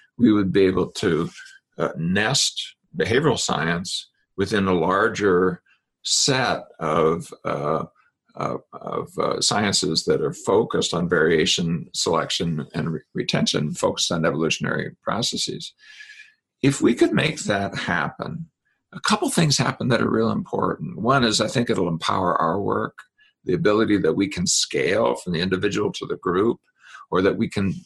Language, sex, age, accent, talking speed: English, male, 50-69, American, 145 wpm